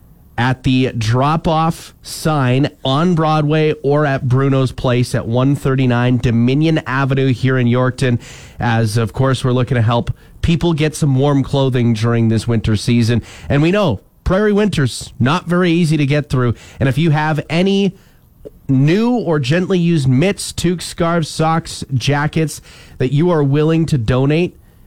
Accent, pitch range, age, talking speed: American, 125-160 Hz, 30-49, 155 wpm